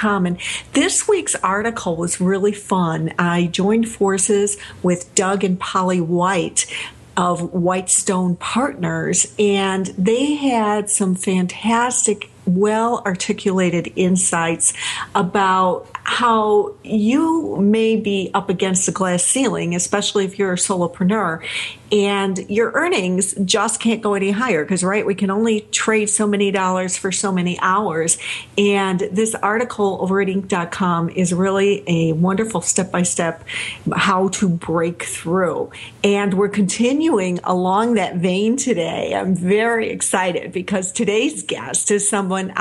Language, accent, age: English, American, 50-69